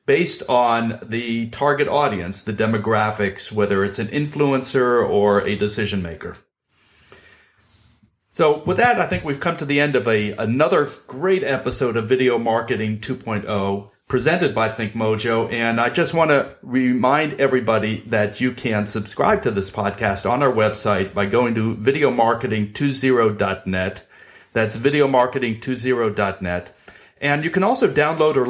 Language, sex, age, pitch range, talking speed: English, male, 40-59, 110-145 Hz, 140 wpm